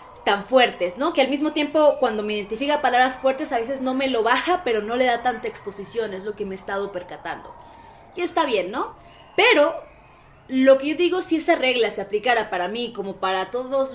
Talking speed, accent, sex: 215 wpm, Mexican, female